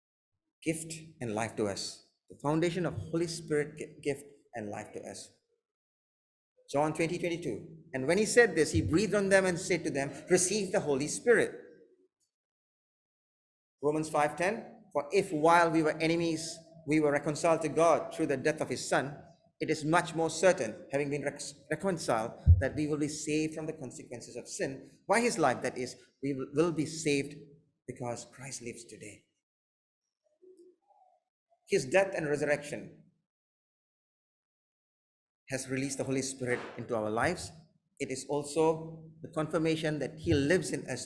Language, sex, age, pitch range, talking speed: English, male, 30-49, 135-170 Hz, 160 wpm